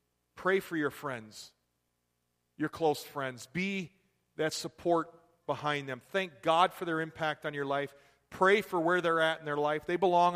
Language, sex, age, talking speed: English, male, 40-59, 175 wpm